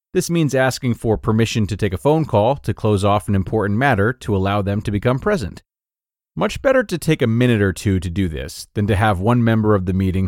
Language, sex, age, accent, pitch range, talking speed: English, male, 30-49, American, 95-130 Hz, 240 wpm